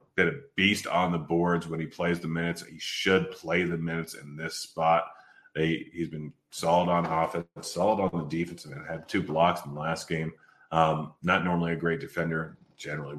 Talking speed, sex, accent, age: 210 wpm, male, American, 30-49